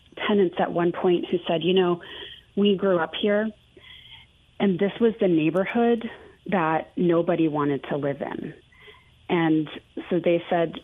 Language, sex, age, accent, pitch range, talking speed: English, female, 30-49, American, 150-190 Hz, 150 wpm